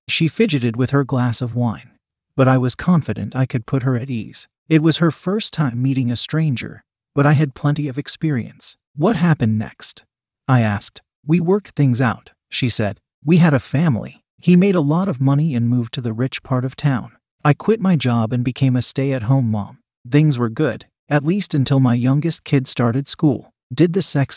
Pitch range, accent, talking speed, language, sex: 125-150 Hz, American, 205 wpm, English, male